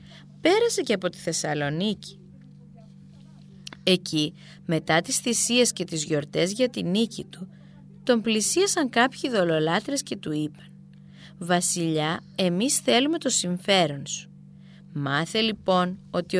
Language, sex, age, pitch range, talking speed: Greek, female, 20-39, 160-215 Hz, 115 wpm